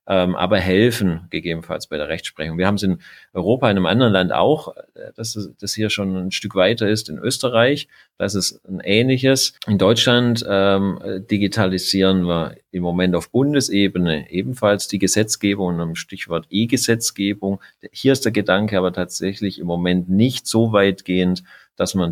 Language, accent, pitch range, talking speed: German, German, 90-110 Hz, 160 wpm